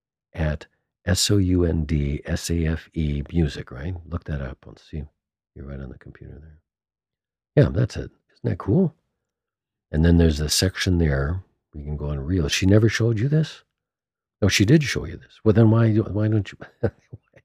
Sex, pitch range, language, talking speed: male, 75-105 Hz, English, 170 wpm